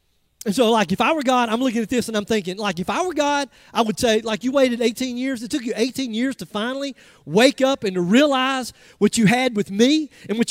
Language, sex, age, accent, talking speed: English, male, 40-59, American, 265 wpm